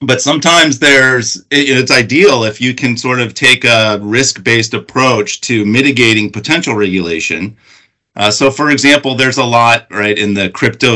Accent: American